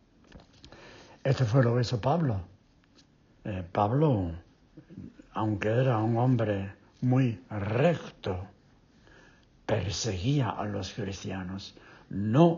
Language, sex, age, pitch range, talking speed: English, male, 60-79, 100-125 Hz, 90 wpm